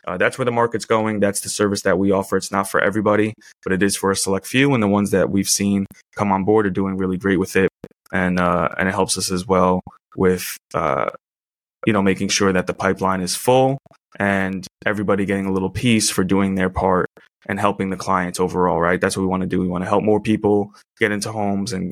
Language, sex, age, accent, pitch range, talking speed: English, male, 20-39, American, 95-115 Hz, 245 wpm